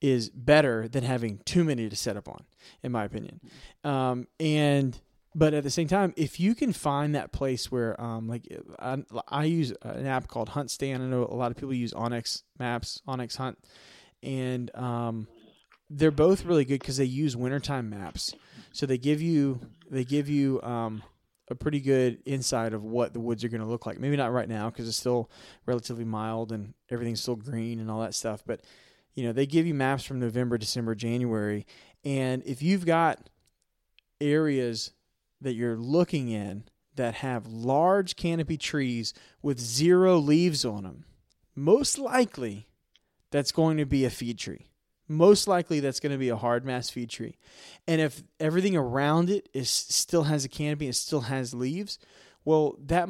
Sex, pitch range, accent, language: male, 120-150 Hz, American, English